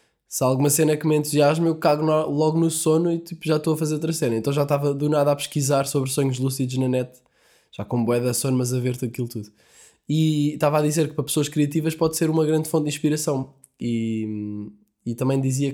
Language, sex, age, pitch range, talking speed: Portuguese, male, 10-29, 125-155 Hz, 230 wpm